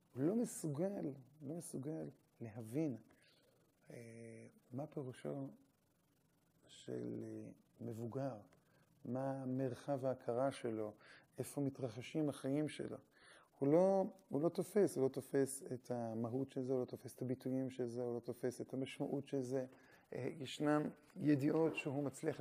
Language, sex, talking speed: Hebrew, male, 125 wpm